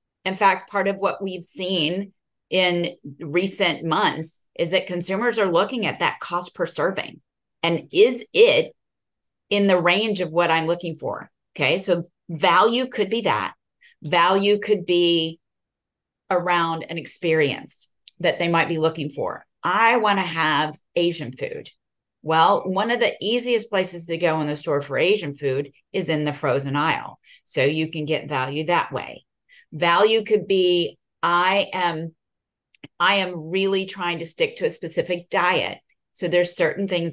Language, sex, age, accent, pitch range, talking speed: English, female, 30-49, American, 155-195 Hz, 160 wpm